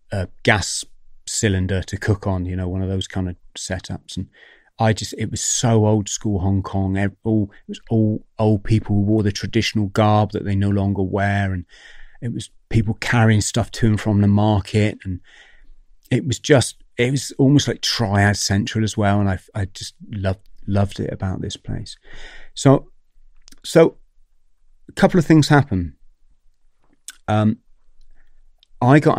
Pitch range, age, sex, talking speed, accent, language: 95-115 Hz, 30-49, male, 170 wpm, British, English